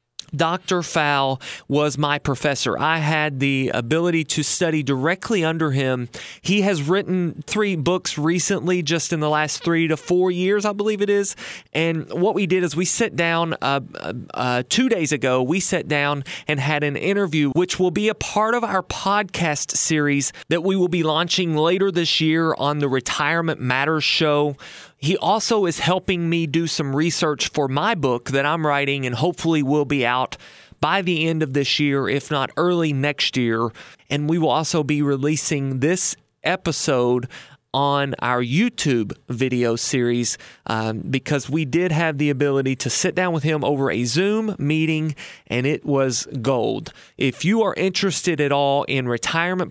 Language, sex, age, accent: English, male, 30-49, American